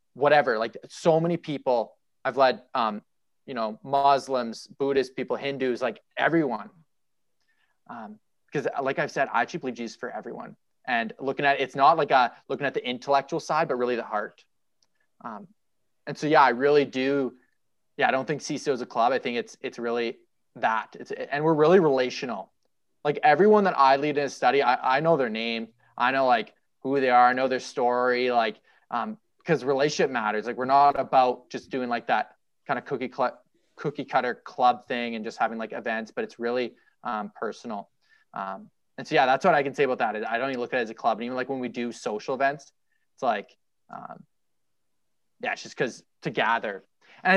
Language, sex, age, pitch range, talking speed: English, male, 20-39, 120-145 Hz, 205 wpm